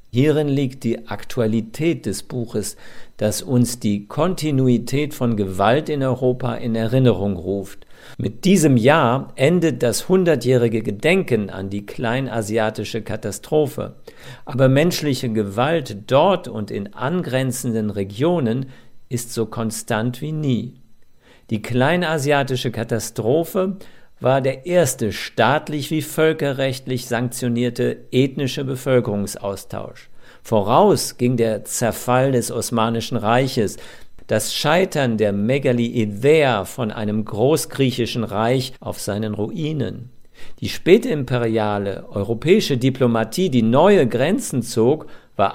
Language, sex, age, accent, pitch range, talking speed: German, male, 50-69, German, 110-140 Hz, 105 wpm